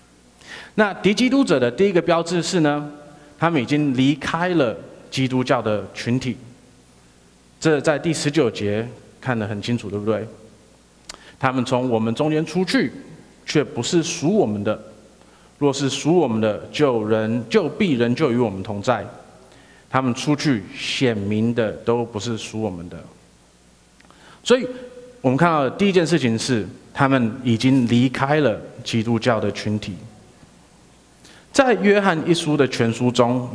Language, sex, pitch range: Chinese, male, 110-150 Hz